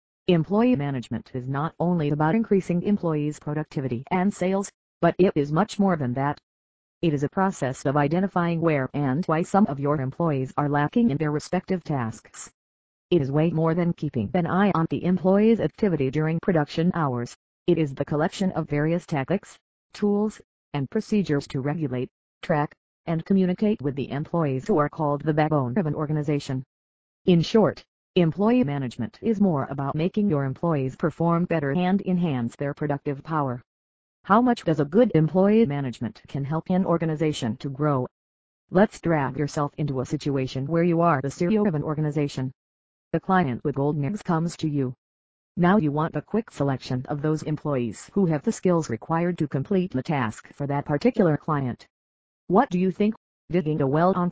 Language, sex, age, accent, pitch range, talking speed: English, female, 40-59, American, 135-180 Hz, 175 wpm